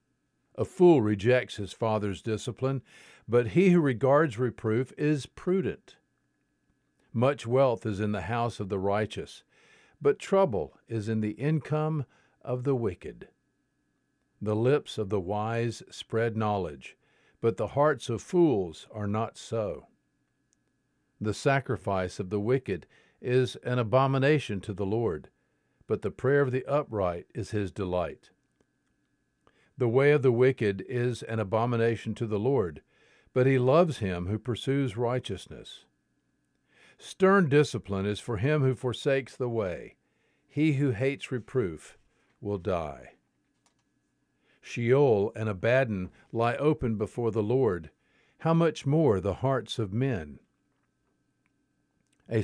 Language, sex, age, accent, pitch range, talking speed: English, male, 50-69, American, 105-135 Hz, 130 wpm